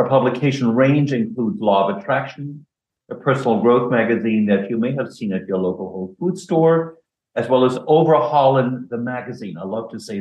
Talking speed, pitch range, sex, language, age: 190 wpm, 115-145 Hz, male, English, 50-69